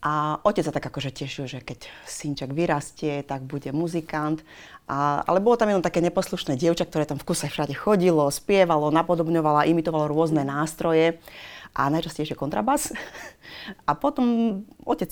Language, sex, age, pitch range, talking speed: Slovak, female, 30-49, 140-165 Hz, 145 wpm